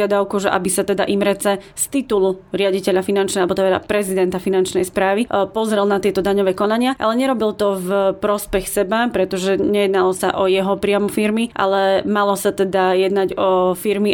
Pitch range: 185-210 Hz